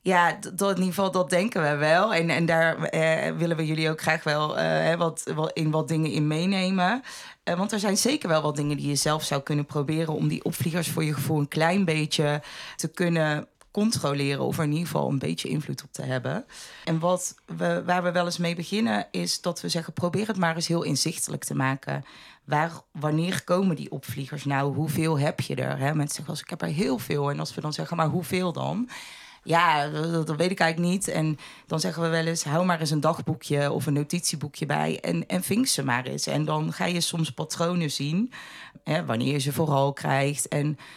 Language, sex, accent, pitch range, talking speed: Dutch, female, Dutch, 150-170 Hz, 210 wpm